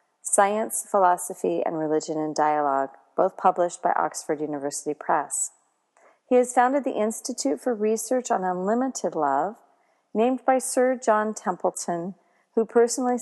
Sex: female